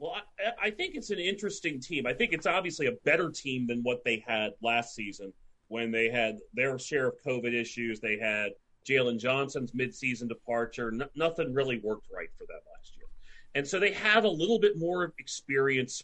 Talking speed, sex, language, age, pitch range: 195 wpm, male, English, 40-59, 120-160 Hz